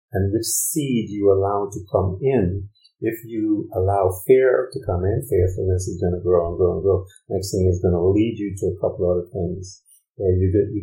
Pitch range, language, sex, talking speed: 95-110 Hz, English, male, 220 wpm